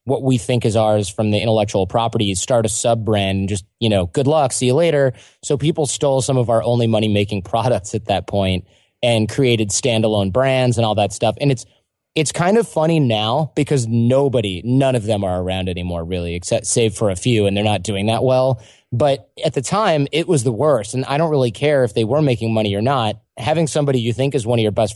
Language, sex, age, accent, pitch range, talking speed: English, male, 20-39, American, 110-135 Hz, 240 wpm